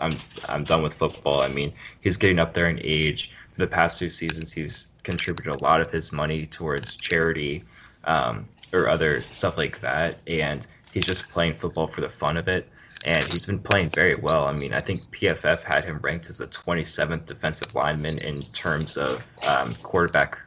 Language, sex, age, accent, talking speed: English, male, 20-39, American, 195 wpm